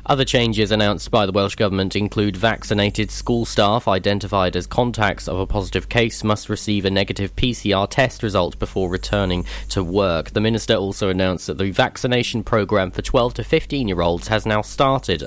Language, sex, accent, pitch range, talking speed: English, male, British, 95-120 Hz, 180 wpm